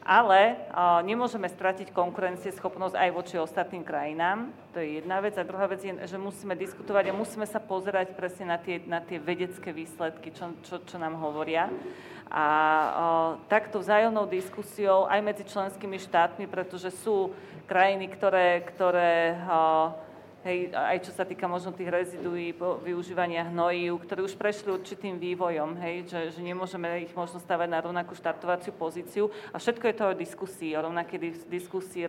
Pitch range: 170-190 Hz